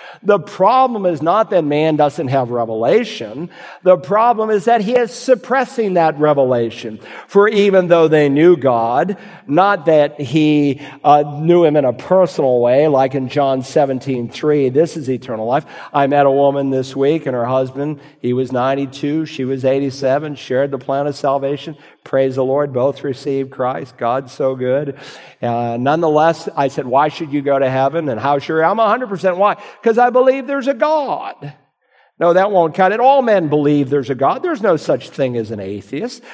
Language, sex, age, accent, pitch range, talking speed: English, male, 50-69, American, 135-205 Hz, 185 wpm